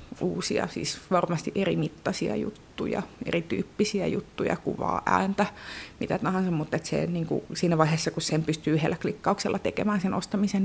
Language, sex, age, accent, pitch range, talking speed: Finnish, female, 30-49, native, 160-195 Hz, 125 wpm